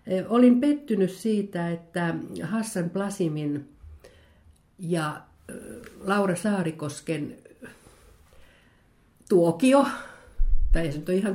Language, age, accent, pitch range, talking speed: Finnish, 60-79, native, 165-215 Hz, 80 wpm